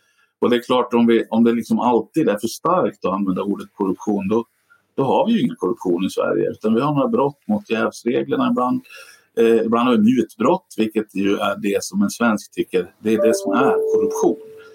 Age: 50-69